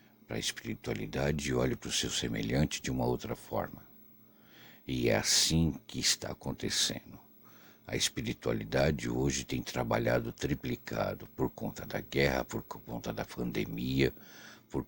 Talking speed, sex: 135 wpm, male